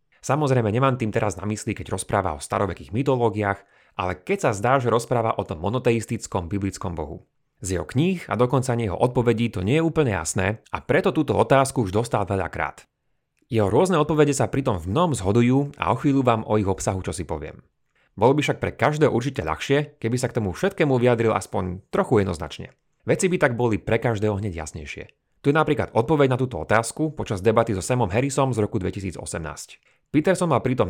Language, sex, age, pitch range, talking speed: Slovak, male, 30-49, 100-135 Hz, 200 wpm